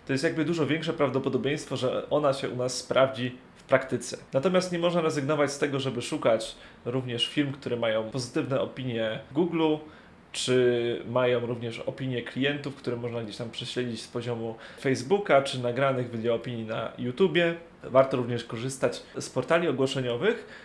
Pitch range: 125-155 Hz